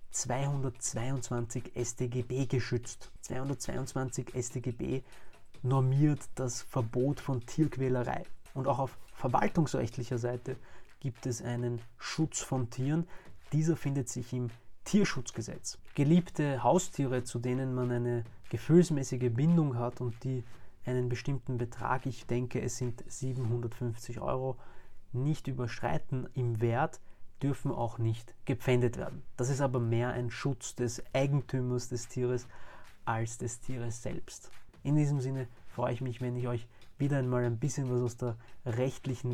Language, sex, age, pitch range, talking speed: German, male, 30-49, 120-135 Hz, 130 wpm